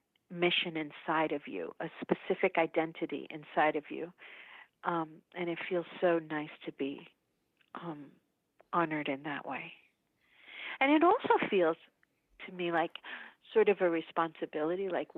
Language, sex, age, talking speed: English, female, 50-69, 140 wpm